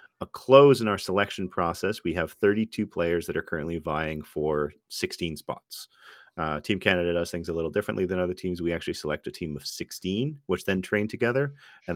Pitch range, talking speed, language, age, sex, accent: 75-90 Hz, 200 wpm, English, 40-59, male, American